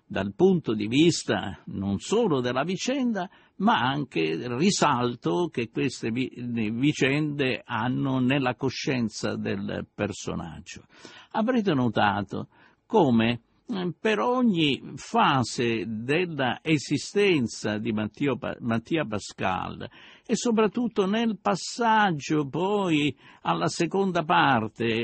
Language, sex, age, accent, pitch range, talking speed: Italian, male, 60-79, native, 115-175 Hz, 95 wpm